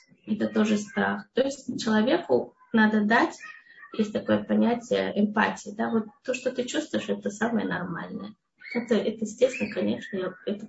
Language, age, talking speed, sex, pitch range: Russian, 20-39, 145 wpm, female, 210-240 Hz